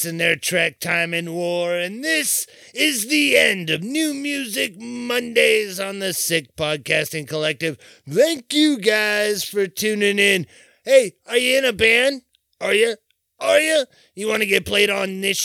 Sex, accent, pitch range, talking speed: male, American, 165-245 Hz, 165 wpm